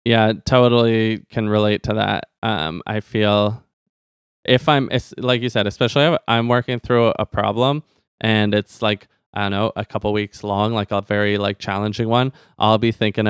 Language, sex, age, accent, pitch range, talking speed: English, male, 20-39, American, 105-120 Hz, 175 wpm